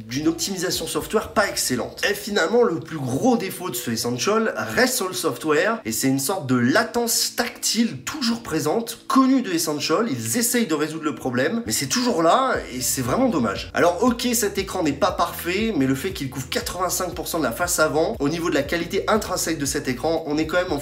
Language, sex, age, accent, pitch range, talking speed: French, male, 30-49, French, 155-230 Hz, 215 wpm